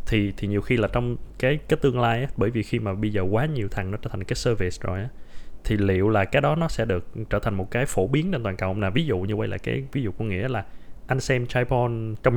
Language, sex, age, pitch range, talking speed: Vietnamese, male, 20-39, 105-140 Hz, 290 wpm